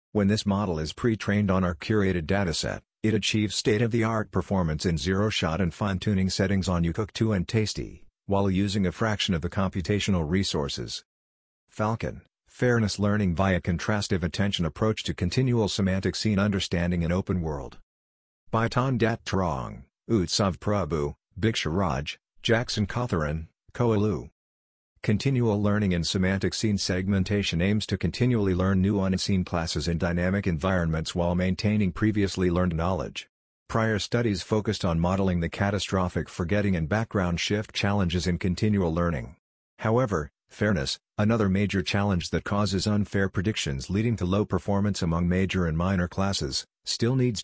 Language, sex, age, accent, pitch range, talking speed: English, male, 50-69, American, 90-105 Hz, 140 wpm